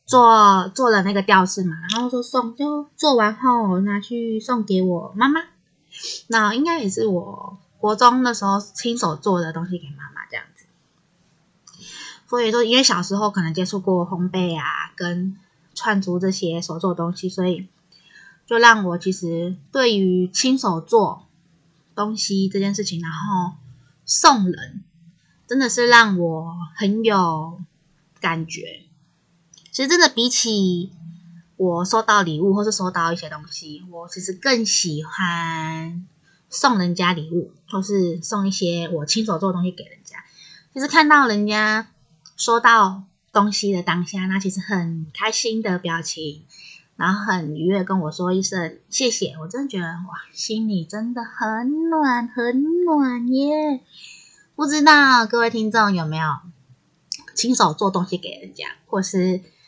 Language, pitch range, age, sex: Chinese, 170-225 Hz, 20-39, female